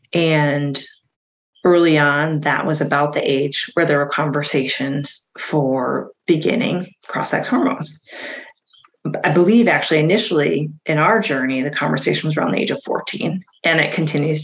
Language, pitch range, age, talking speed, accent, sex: English, 145-180 Hz, 30-49, 140 wpm, American, female